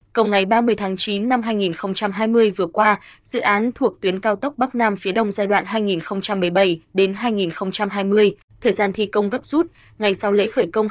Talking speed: 195 wpm